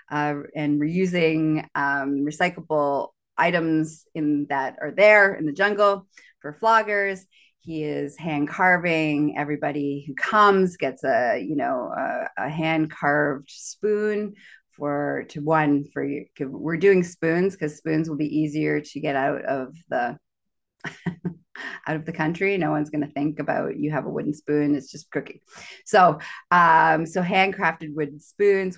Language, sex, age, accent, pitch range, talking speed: English, female, 30-49, American, 150-185 Hz, 150 wpm